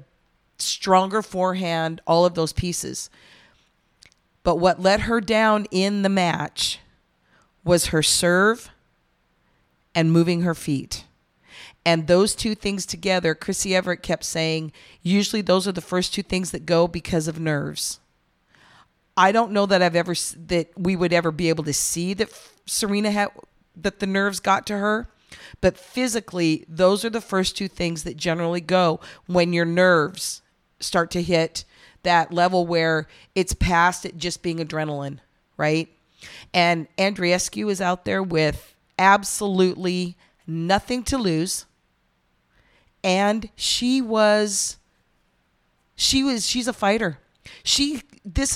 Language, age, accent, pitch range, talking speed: English, 40-59, American, 165-200 Hz, 140 wpm